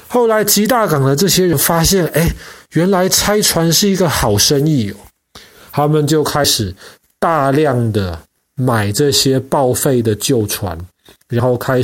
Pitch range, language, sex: 120-165 Hz, Chinese, male